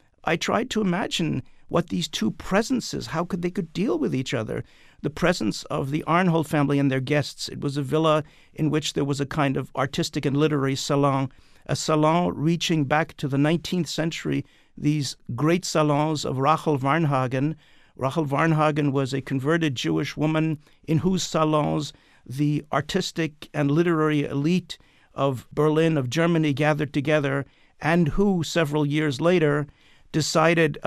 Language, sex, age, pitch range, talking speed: English, male, 50-69, 140-165 Hz, 155 wpm